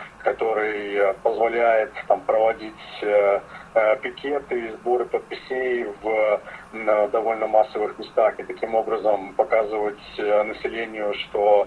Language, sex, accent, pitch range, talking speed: Russian, male, native, 110-130 Hz, 110 wpm